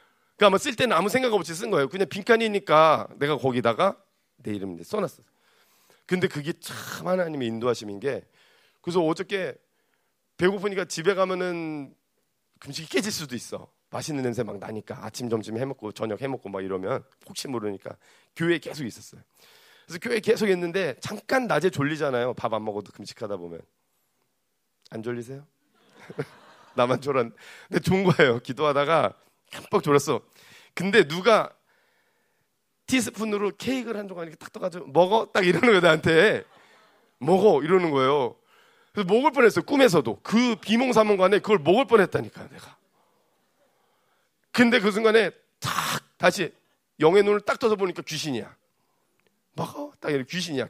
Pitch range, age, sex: 135-210 Hz, 30-49, male